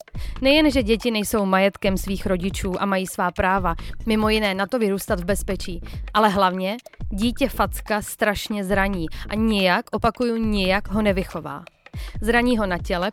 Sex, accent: female, native